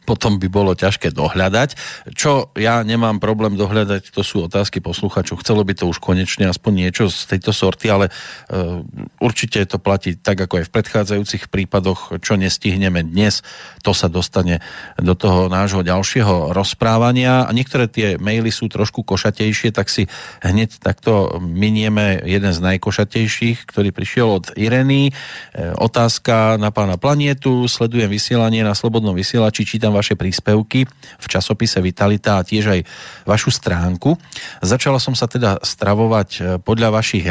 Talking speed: 150 wpm